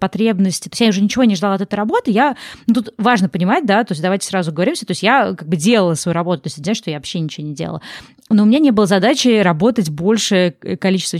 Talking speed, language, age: 255 wpm, Russian, 20-39